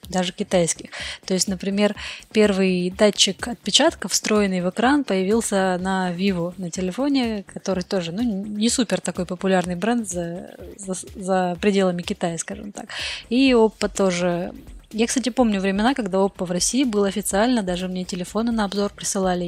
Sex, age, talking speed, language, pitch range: female, 20-39, 150 wpm, Russian, 185-215 Hz